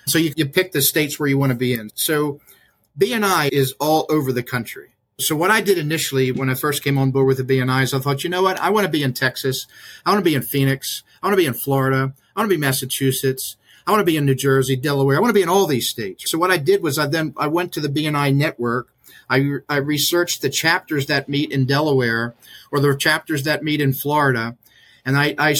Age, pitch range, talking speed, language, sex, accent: 50-69, 130-155 Hz, 260 wpm, English, male, American